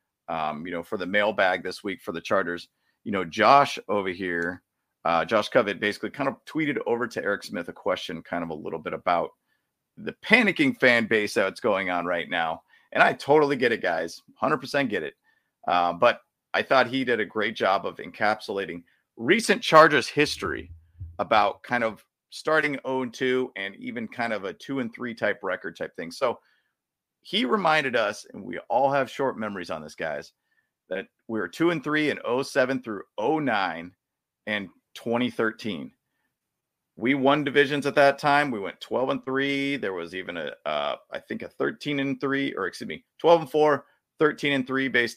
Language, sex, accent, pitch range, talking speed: English, male, American, 110-155 Hz, 190 wpm